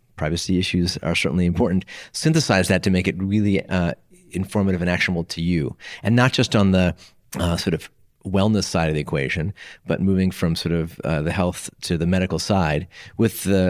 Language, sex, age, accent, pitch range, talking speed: English, male, 30-49, American, 85-100 Hz, 195 wpm